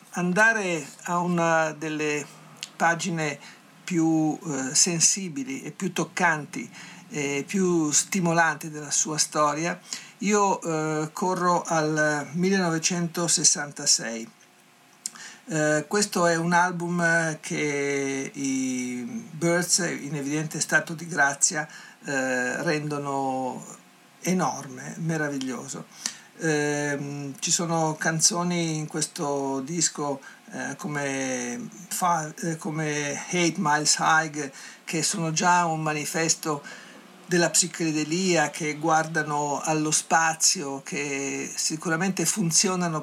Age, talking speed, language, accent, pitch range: 50-69, 90 wpm, Italian, native, 145-175 Hz